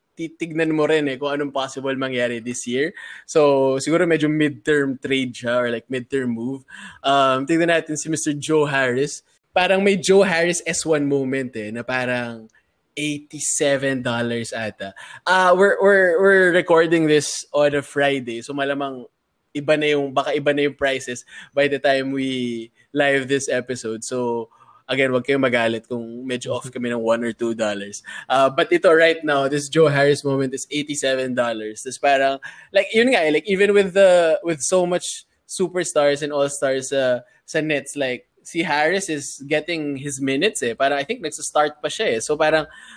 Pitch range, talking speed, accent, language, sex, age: 130-165 Hz, 170 wpm, native, Filipino, male, 20-39